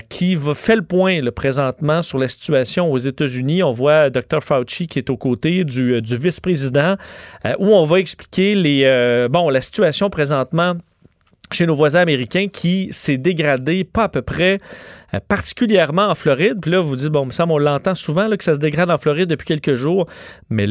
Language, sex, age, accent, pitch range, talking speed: French, male, 30-49, Canadian, 140-180 Hz, 195 wpm